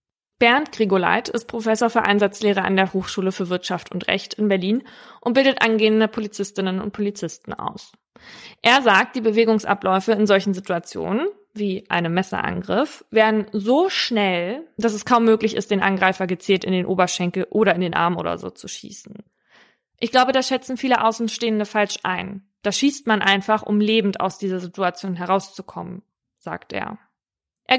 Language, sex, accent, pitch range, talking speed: German, female, German, 190-225 Hz, 160 wpm